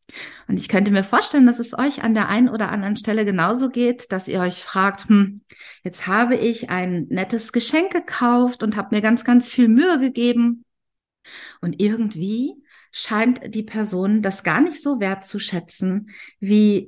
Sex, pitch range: female, 185-235 Hz